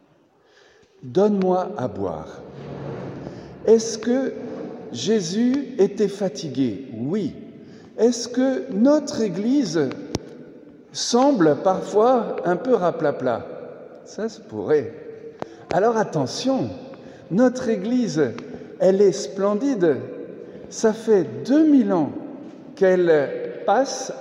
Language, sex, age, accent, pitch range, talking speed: French, male, 60-79, French, 160-240 Hz, 85 wpm